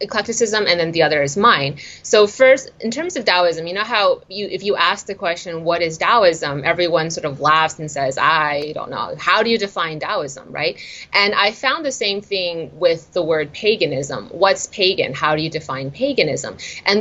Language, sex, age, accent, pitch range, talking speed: English, female, 30-49, American, 160-205 Hz, 205 wpm